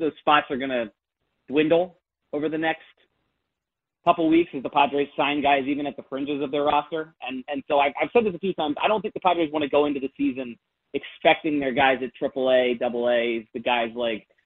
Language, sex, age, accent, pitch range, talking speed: English, male, 30-49, American, 130-155 Hz, 220 wpm